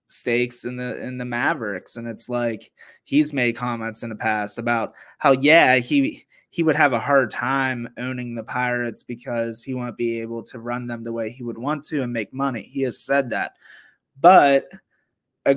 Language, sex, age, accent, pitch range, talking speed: English, male, 20-39, American, 115-130 Hz, 195 wpm